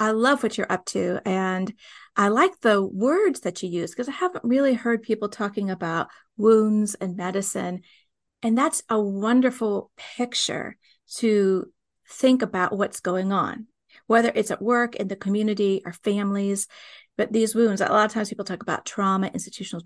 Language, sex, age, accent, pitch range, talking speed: English, female, 40-59, American, 195-250 Hz, 170 wpm